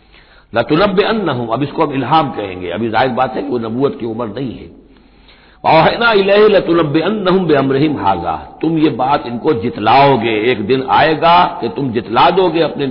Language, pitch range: Hindi, 120-155 Hz